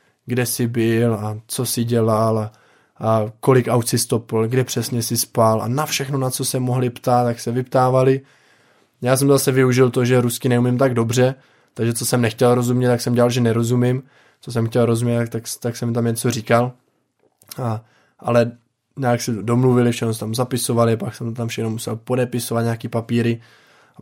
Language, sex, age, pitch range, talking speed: Czech, male, 20-39, 115-130 Hz, 190 wpm